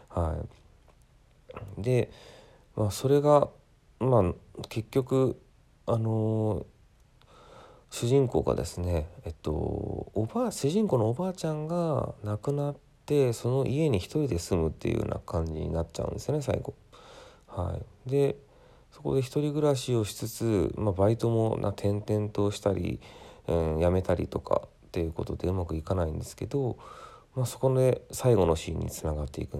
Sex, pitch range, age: male, 85-120 Hz, 40-59